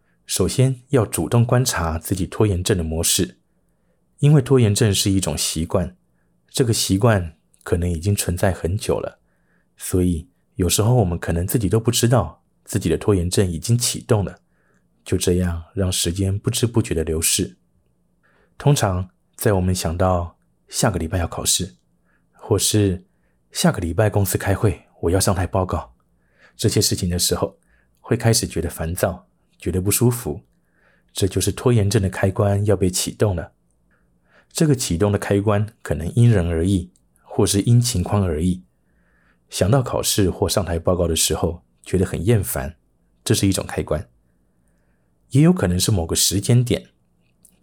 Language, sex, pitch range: Chinese, male, 85-105 Hz